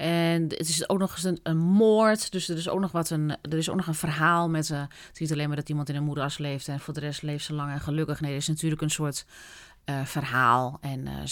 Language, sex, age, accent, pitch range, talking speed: Dutch, female, 30-49, Dutch, 155-210 Hz, 285 wpm